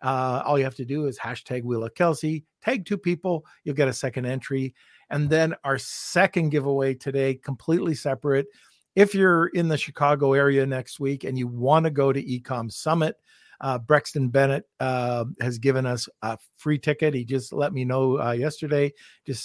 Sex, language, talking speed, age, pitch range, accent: male, English, 190 wpm, 50-69, 125-150 Hz, American